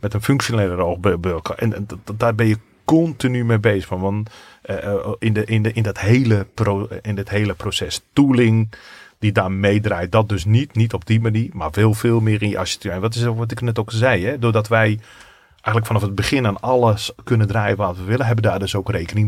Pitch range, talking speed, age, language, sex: 100-115 Hz, 200 wpm, 30-49, Dutch, male